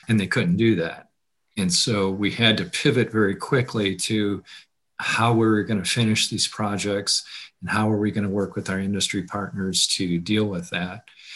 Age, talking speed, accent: 50-69, 195 wpm, American